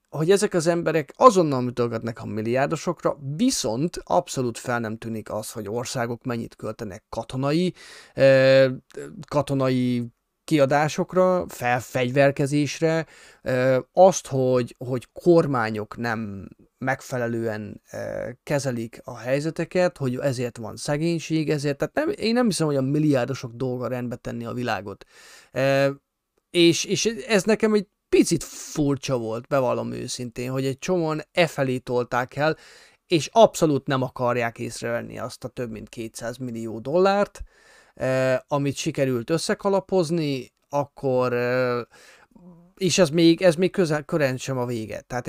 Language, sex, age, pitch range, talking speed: Hungarian, male, 30-49, 120-165 Hz, 130 wpm